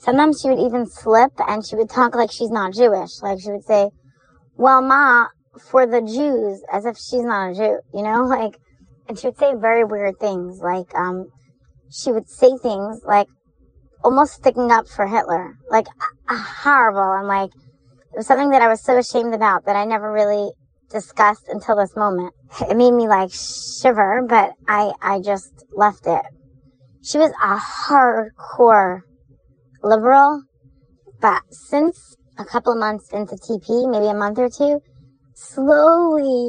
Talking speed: 170 wpm